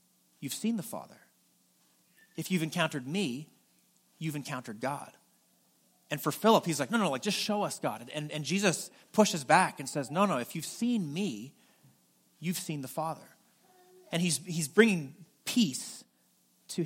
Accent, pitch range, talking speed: American, 145-185 Hz, 165 wpm